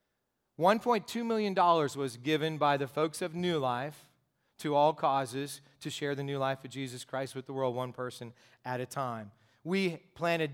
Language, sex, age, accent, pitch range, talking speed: English, male, 40-59, American, 135-170 Hz, 170 wpm